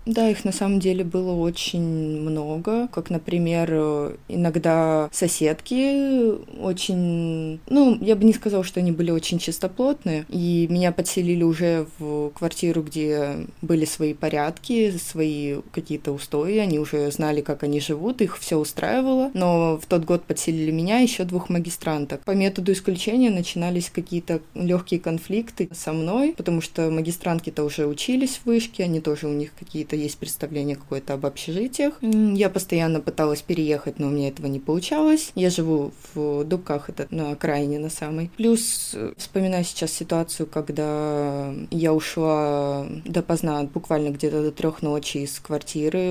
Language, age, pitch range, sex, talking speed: Russian, 20-39, 150-180 Hz, female, 150 wpm